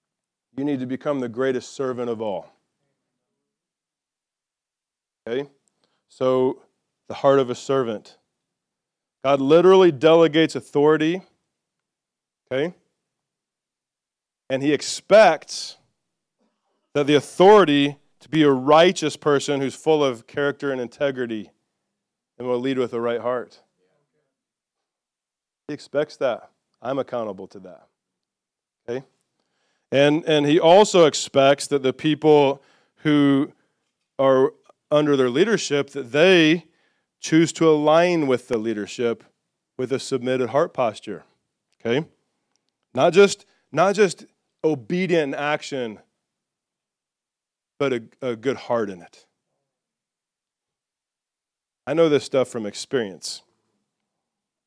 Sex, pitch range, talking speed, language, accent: male, 130-155 Hz, 110 wpm, English, American